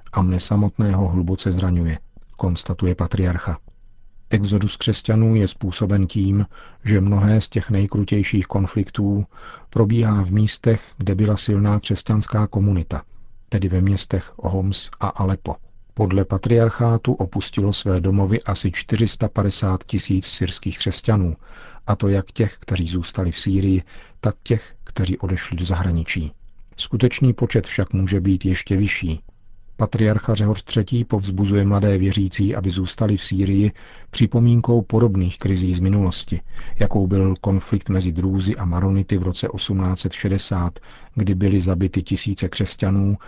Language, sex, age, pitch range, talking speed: Czech, male, 50-69, 95-105 Hz, 130 wpm